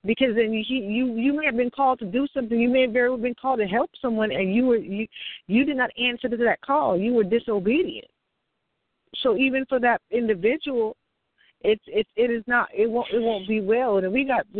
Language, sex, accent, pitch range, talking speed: English, female, American, 200-250 Hz, 225 wpm